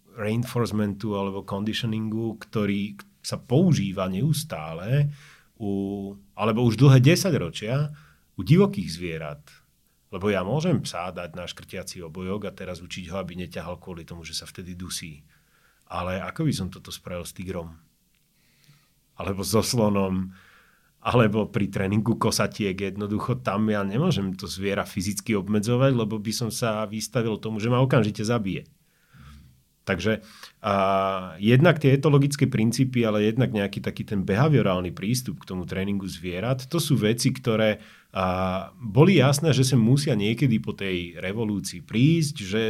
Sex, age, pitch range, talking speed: male, 40-59, 95-130 Hz, 140 wpm